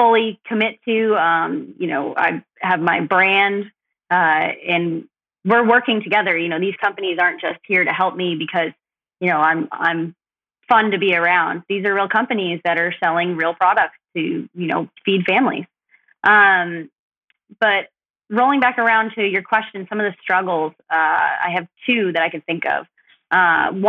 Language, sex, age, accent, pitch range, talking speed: English, female, 20-39, American, 170-215 Hz, 175 wpm